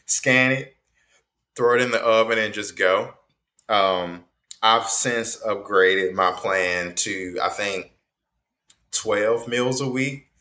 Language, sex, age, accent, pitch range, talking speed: English, male, 20-39, American, 95-130 Hz, 135 wpm